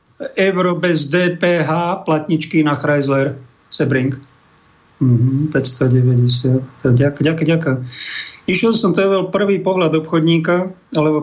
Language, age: Slovak, 50-69